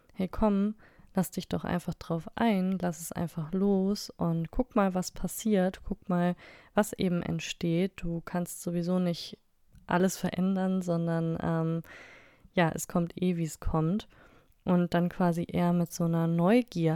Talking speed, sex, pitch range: 160 wpm, female, 165-185 Hz